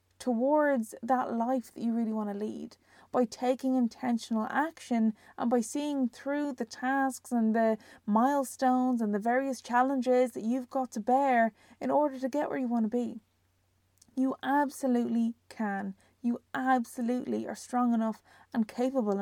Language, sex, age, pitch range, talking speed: English, female, 20-39, 235-270 Hz, 155 wpm